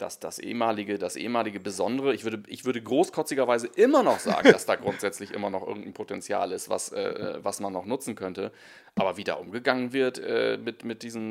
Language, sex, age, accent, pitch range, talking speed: German, male, 30-49, German, 120-150 Hz, 200 wpm